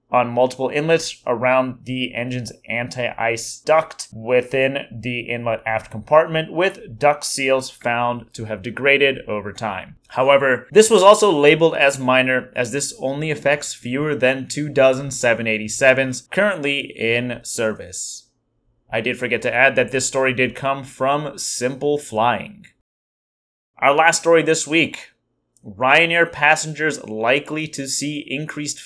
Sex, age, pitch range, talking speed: male, 20-39, 120-145 Hz, 135 wpm